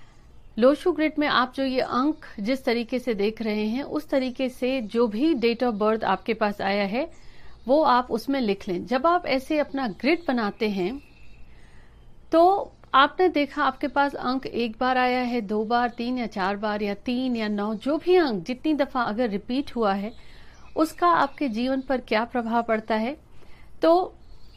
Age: 50-69